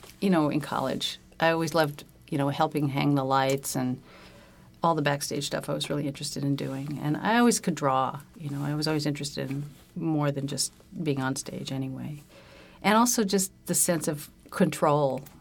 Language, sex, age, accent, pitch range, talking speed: English, female, 50-69, American, 140-170 Hz, 195 wpm